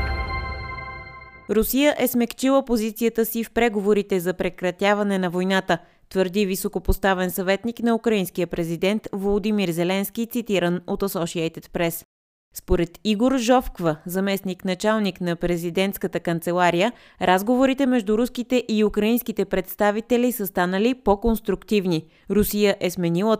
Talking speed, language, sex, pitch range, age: 110 wpm, Bulgarian, female, 175-220 Hz, 20-39